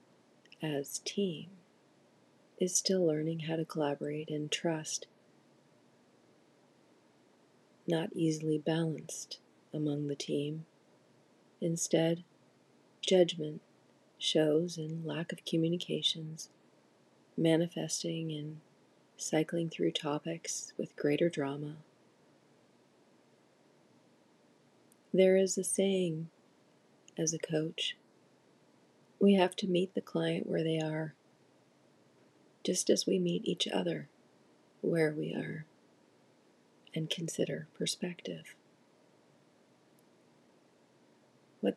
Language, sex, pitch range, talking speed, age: English, female, 150-180 Hz, 85 wpm, 40-59